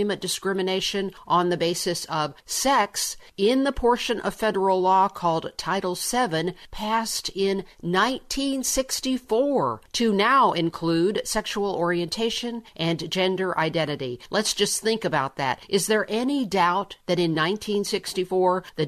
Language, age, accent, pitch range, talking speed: English, 50-69, American, 170-210 Hz, 125 wpm